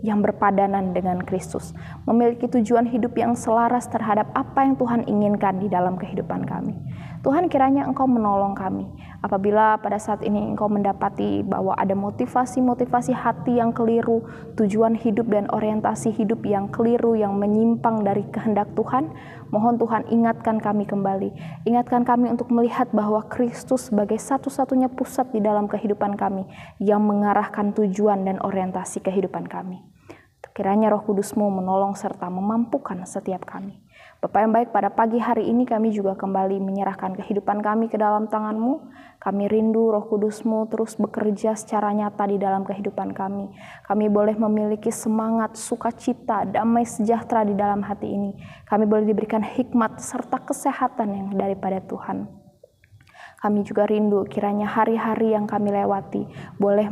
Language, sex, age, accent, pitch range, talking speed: Indonesian, female, 20-39, native, 200-230 Hz, 145 wpm